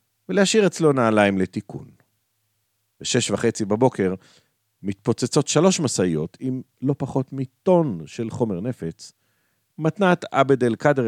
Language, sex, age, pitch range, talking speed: Hebrew, male, 50-69, 105-130 Hz, 110 wpm